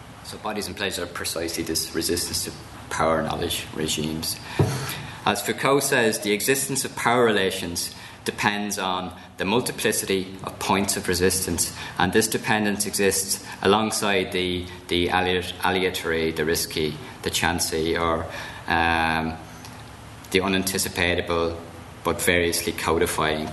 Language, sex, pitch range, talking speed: English, male, 80-95 Hz, 120 wpm